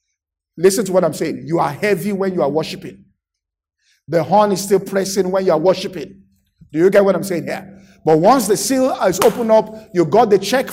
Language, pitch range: English, 170-225 Hz